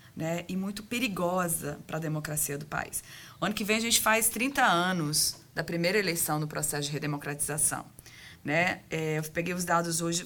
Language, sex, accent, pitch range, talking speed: Portuguese, female, Brazilian, 160-205 Hz, 185 wpm